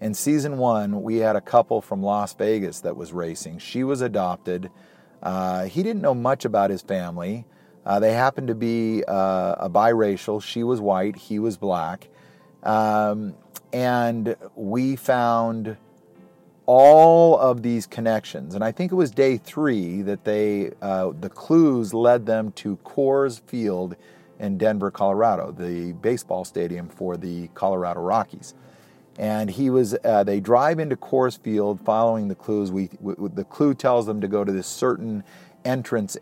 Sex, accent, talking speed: male, American, 160 wpm